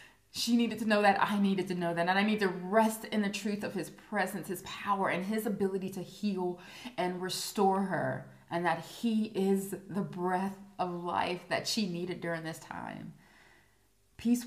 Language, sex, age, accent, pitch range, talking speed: English, female, 20-39, American, 165-210 Hz, 190 wpm